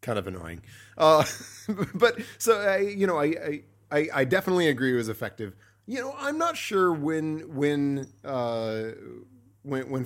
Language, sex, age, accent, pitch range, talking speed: English, male, 30-49, American, 120-155 Hz, 160 wpm